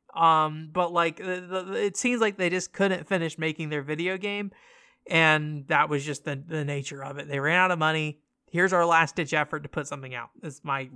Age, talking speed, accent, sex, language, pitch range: 20-39, 225 wpm, American, male, English, 140-180 Hz